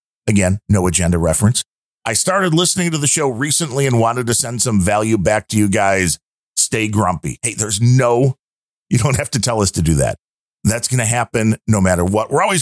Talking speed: 210 wpm